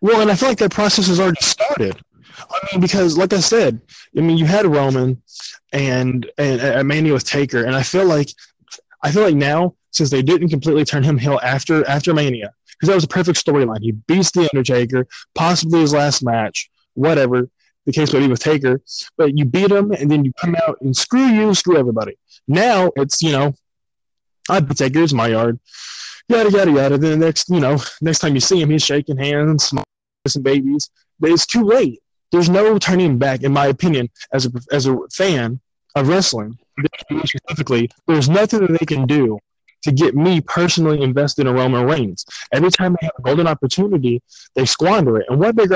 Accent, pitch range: American, 135-175 Hz